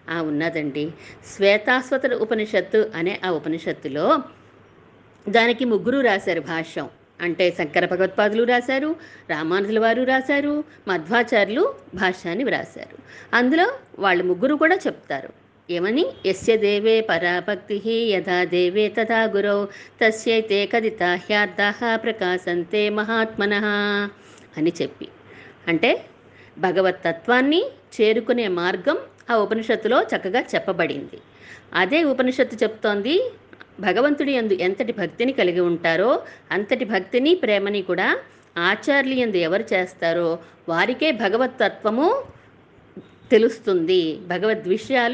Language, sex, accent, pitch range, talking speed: Telugu, female, native, 185-250 Hz, 95 wpm